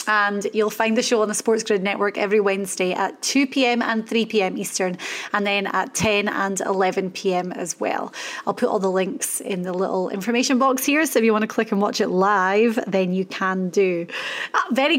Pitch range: 205-245 Hz